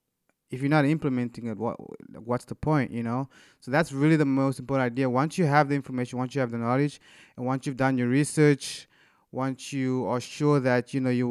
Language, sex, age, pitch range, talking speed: English, male, 20-39, 125-145 Hz, 225 wpm